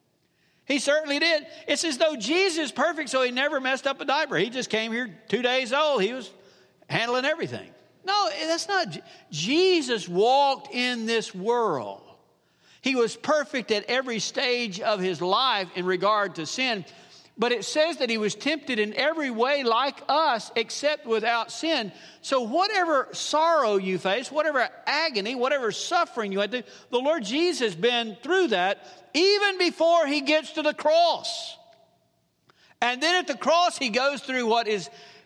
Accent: American